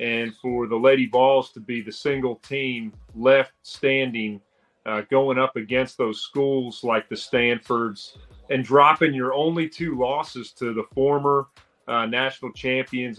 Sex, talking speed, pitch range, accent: male, 150 wpm, 115-135 Hz, American